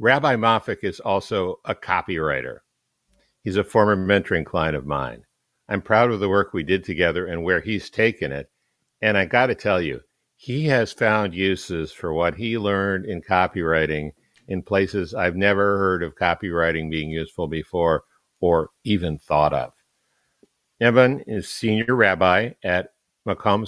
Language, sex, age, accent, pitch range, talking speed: English, male, 60-79, American, 90-110 Hz, 155 wpm